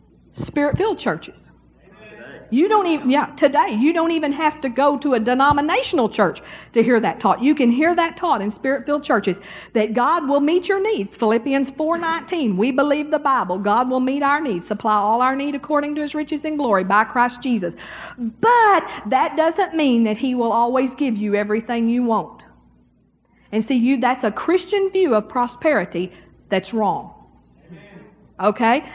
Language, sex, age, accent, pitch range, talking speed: English, female, 50-69, American, 220-295 Hz, 175 wpm